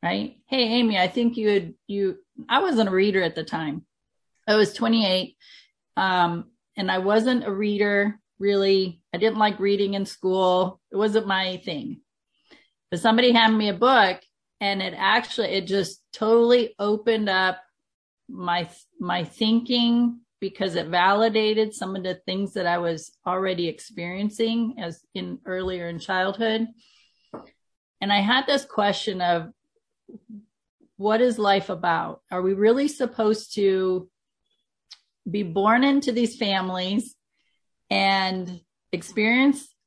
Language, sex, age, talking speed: English, female, 40-59, 135 wpm